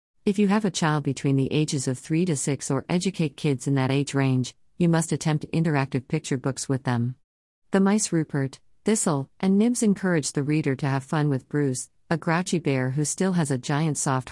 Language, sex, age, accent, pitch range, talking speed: English, female, 50-69, American, 130-160 Hz, 210 wpm